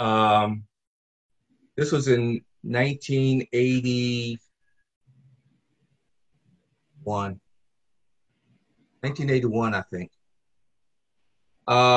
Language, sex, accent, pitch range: English, male, American, 105-130 Hz